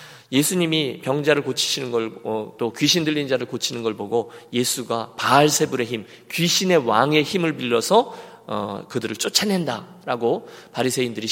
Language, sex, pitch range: Korean, male, 120-180 Hz